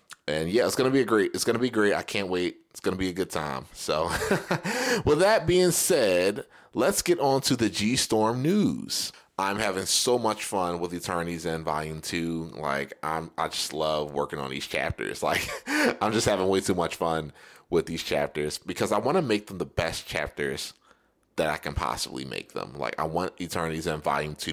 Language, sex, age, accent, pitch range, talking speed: English, male, 30-49, American, 75-100 Hz, 220 wpm